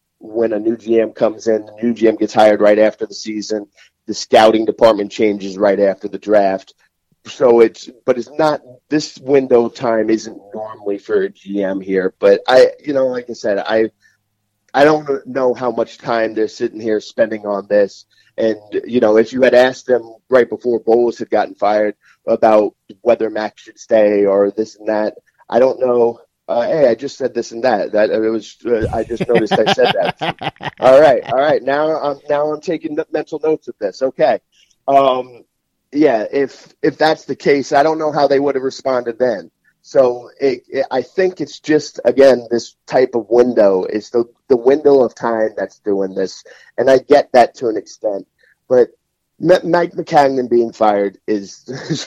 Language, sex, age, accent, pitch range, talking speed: English, male, 30-49, American, 110-140 Hz, 195 wpm